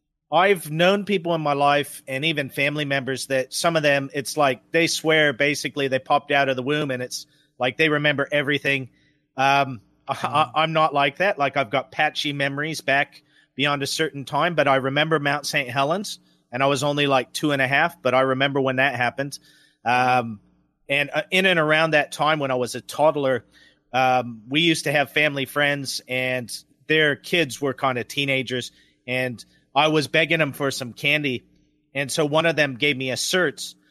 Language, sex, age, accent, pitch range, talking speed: English, male, 40-59, American, 130-150 Hz, 195 wpm